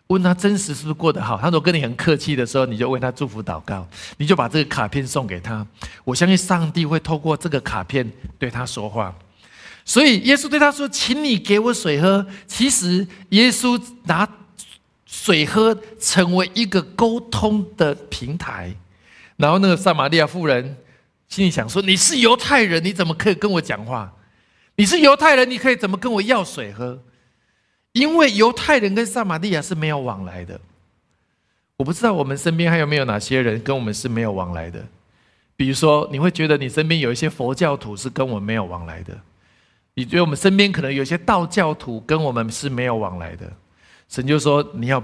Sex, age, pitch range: male, 50-69, 115-190 Hz